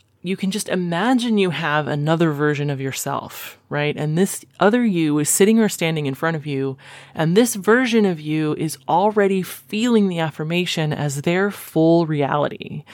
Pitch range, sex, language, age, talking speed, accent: 145-175 Hz, female, English, 30-49, 170 wpm, American